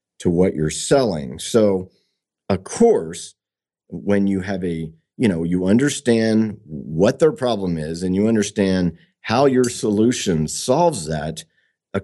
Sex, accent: male, American